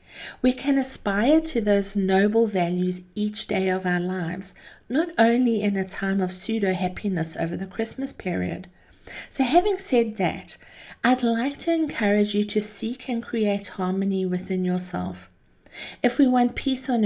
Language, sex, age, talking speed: English, female, 50-69, 155 wpm